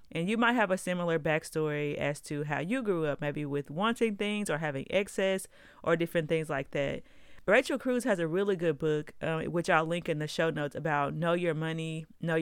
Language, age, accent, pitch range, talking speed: English, 30-49, American, 155-195 Hz, 220 wpm